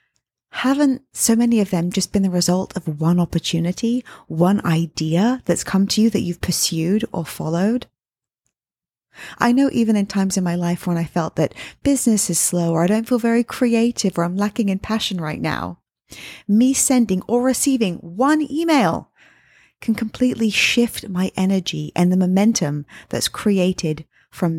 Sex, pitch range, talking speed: female, 175-235 Hz, 165 wpm